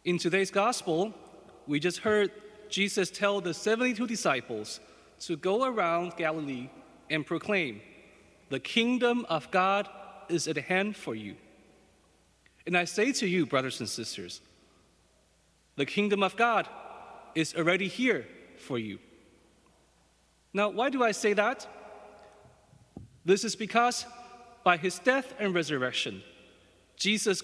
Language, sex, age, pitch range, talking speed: English, male, 30-49, 165-225 Hz, 125 wpm